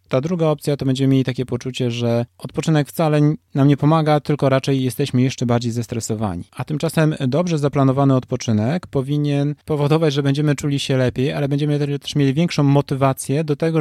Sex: male